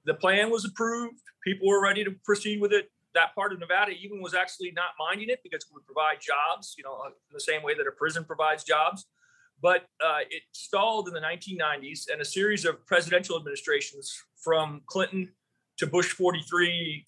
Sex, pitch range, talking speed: male, 170-245 Hz, 195 wpm